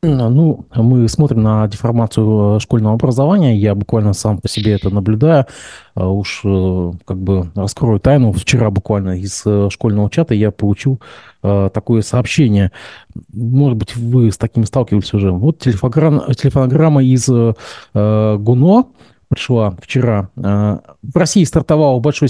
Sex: male